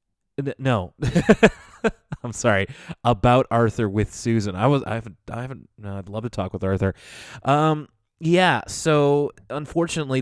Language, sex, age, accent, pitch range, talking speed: English, male, 20-39, American, 110-140 Hz, 140 wpm